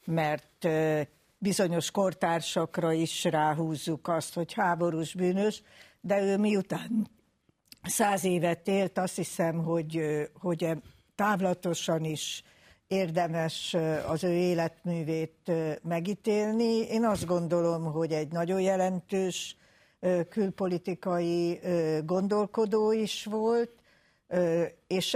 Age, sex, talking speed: 60-79, female, 90 wpm